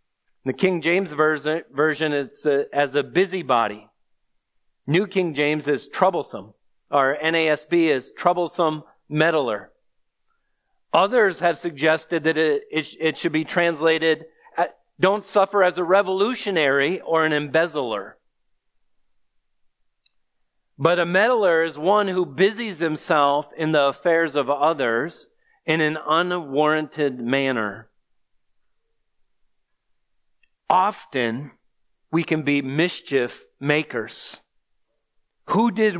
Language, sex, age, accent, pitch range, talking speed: English, male, 40-59, American, 155-205 Hz, 105 wpm